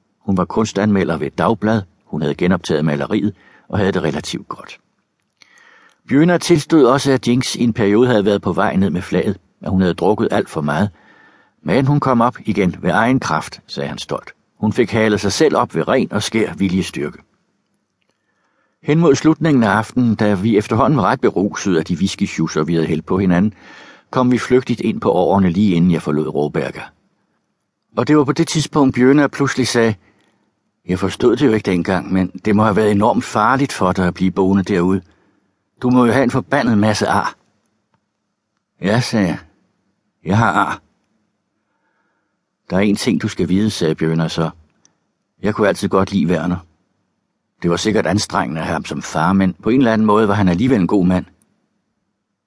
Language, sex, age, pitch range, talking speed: Danish, male, 60-79, 95-115 Hz, 190 wpm